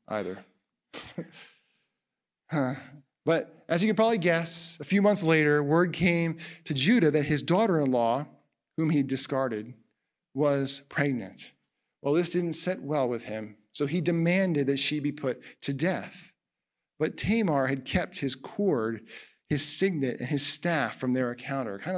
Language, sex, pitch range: English, male, 130-170 Hz